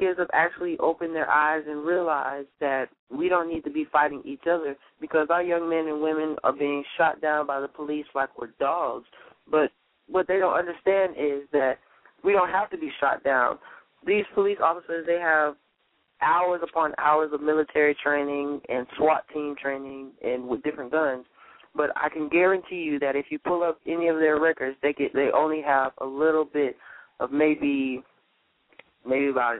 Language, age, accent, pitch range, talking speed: English, 20-39, American, 140-165 Hz, 185 wpm